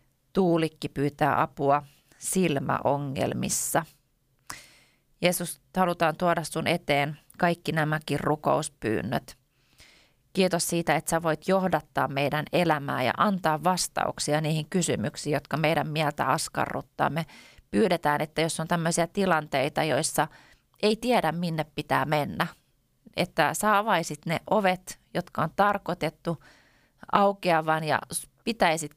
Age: 30-49